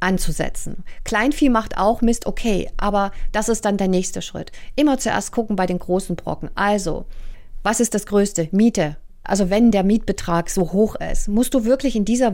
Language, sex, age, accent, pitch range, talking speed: German, female, 40-59, German, 190-240 Hz, 185 wpm